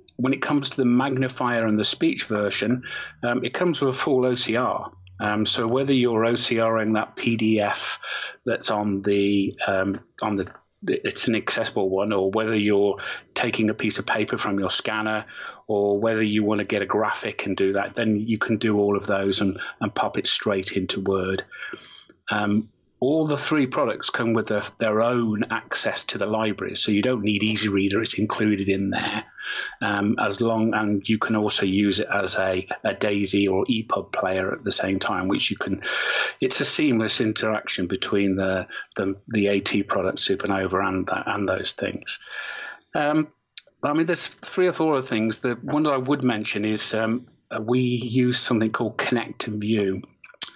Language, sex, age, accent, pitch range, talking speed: English, male, 30-49, British, 100-120 Hz, 185 wpm